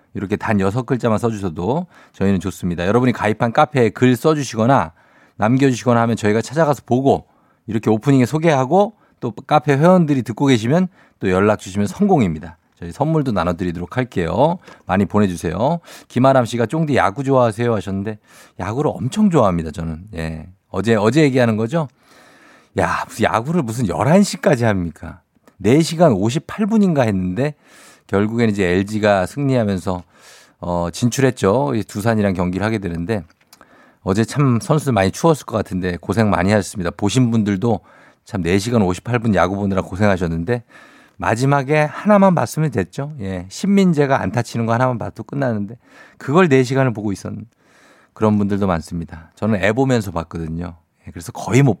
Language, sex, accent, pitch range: Korean, male, native, 95-135 Hz